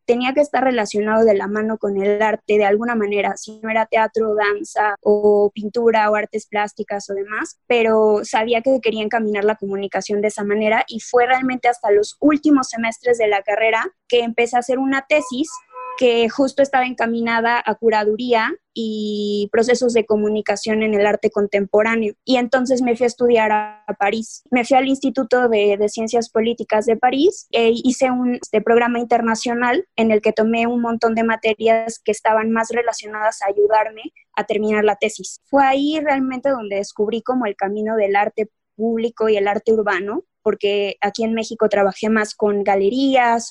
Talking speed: 180 wpm